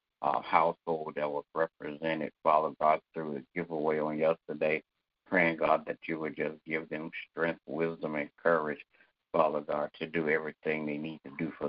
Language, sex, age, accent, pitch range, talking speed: English, male, 60-79, American, 75-80 Hz, 175 wpm